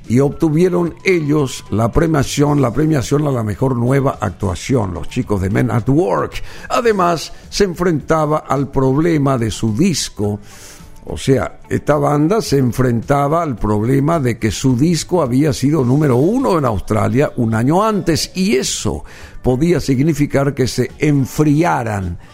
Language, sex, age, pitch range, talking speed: Spanish, male, 60-79, 125-170 Hz, 145 wpm